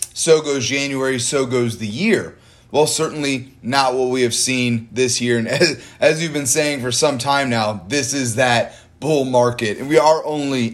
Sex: male